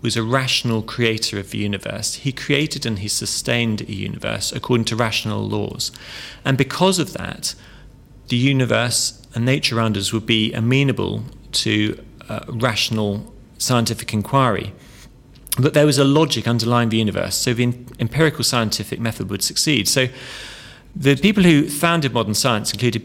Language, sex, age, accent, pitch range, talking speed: English, male, 40-59, British, 110-135 Hz, 155 wpm